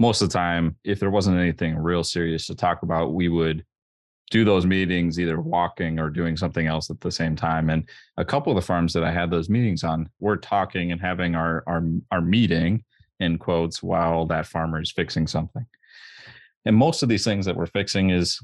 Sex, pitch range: male, 80-95 Hz